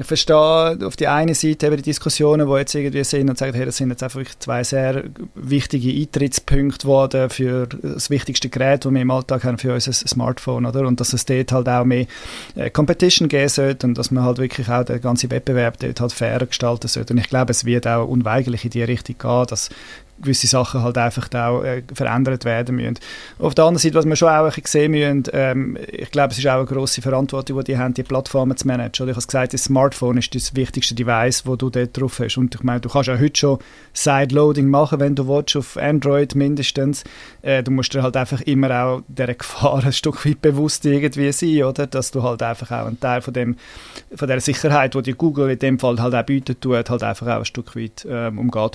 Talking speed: 230 wpm